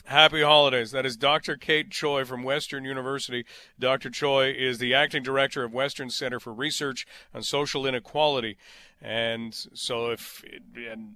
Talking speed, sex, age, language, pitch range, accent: 150 wpm, male, 40-59, English, 125-155 Hz, American